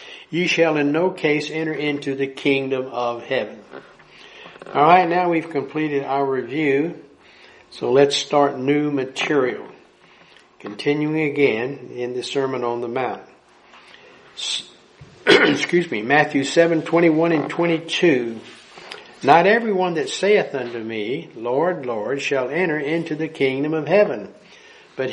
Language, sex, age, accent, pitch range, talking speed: English, male, 60-79, American, 125-160 Hz, 130 wpm